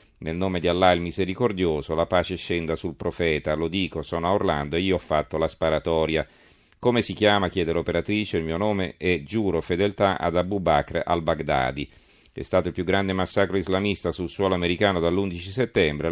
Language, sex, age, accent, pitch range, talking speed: Italian, male, 40-59, native, 80-95 Hz, 185 wpm